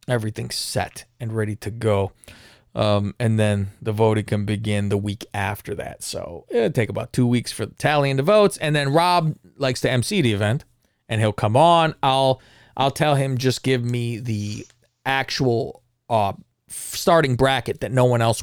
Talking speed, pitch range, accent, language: 180 wpm, 110-145 Hz, American, English